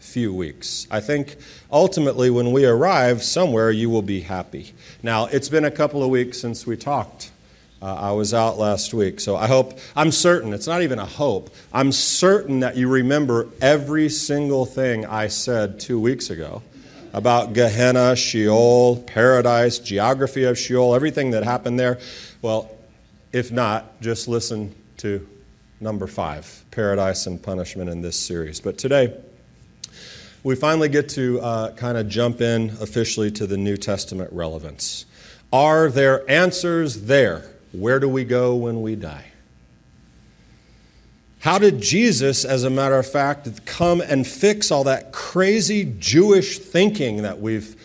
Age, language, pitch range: 40-59, English, 110-140 Hz